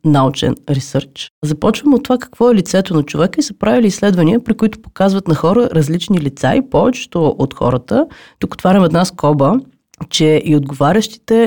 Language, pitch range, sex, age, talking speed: Bulgarian, 145-215 Hz, female, 30-49, 165 wpm